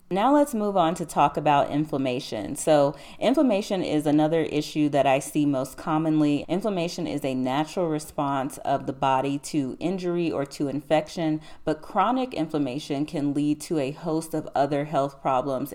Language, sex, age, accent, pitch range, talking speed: English, female, 30-49, American, 140-160 Hz, 165 wpm